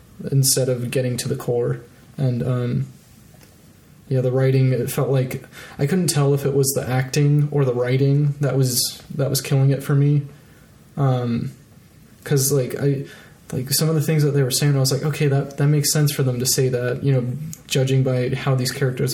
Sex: male